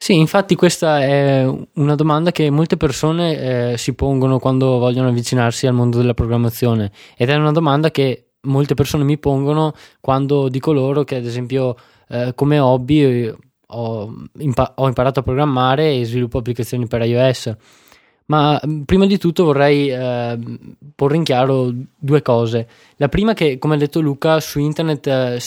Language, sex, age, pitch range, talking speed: Italian, male, 20-39, 125-145 Hz, 160 wpm